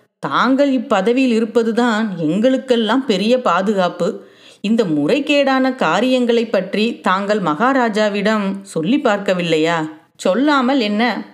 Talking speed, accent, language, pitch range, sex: 85 wpm, native, Tamil, 205-265 Hz, female